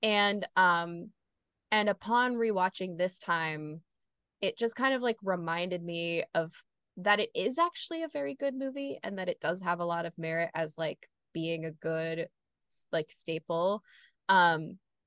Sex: female